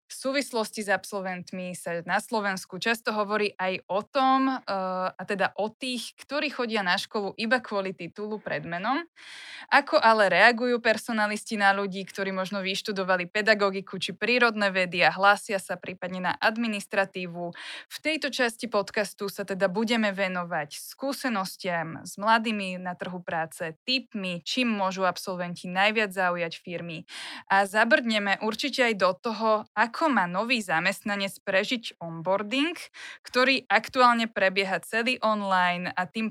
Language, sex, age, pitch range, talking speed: Slovak, female, 20-39, 185-225 Hz, 140 wpm